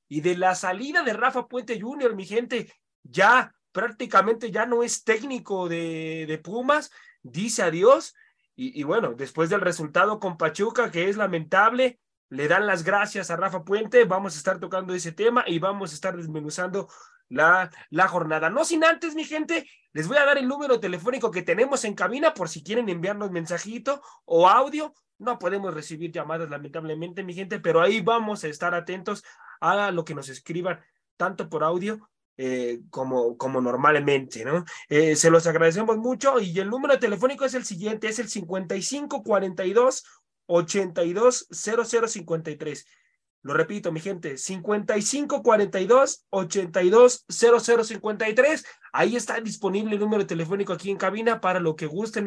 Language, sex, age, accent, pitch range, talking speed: Spanish, male, 30-49, Mexican, 170-240 Hz, 155 wpm